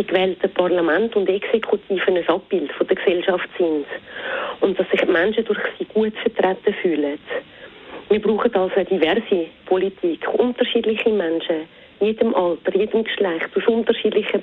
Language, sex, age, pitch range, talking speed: German, female, 40-59, 180-220 Hz, 135 wpm